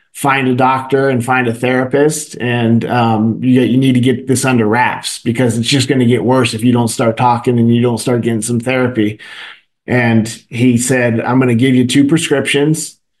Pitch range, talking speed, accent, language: 120-140 Hz, 210 wpm, American, English